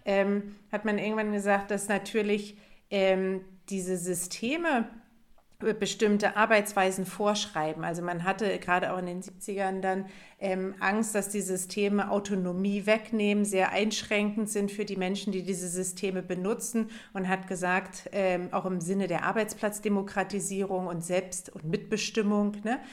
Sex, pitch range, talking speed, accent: female, 180-210 Hz, 135 wpm, German